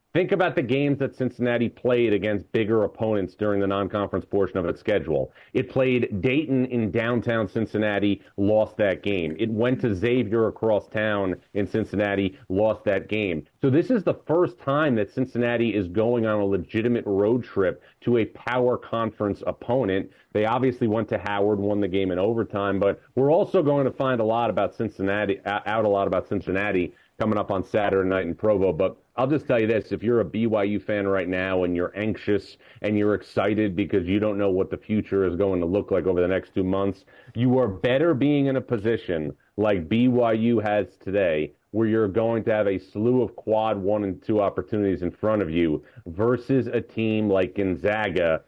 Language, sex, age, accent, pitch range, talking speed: English, male, 40-59, American, 100-120 Hz, 195 wpm